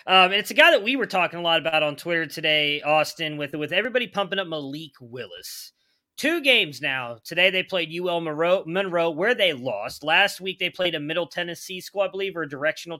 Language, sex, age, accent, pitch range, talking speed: English, male, 30-49, American, 155-200 Hz, 220 wpm